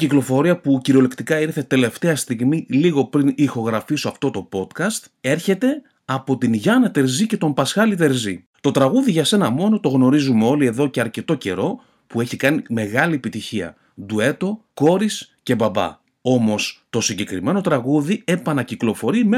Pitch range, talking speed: 115-190 Hz, 150 wpm